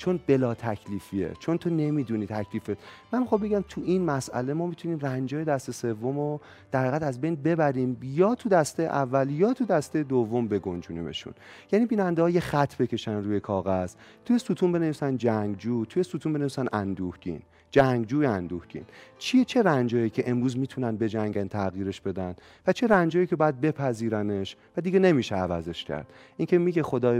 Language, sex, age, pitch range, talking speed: Persian, male, 40-59, 110-160 Hz, 160 wpm